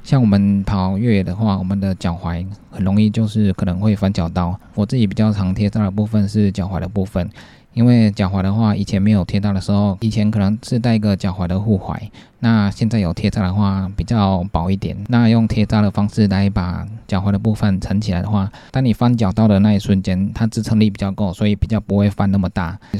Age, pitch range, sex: 20-39, 95-105 Hz, male